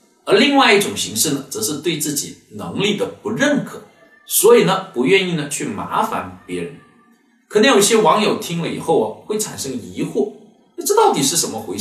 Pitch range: 180-240 Hz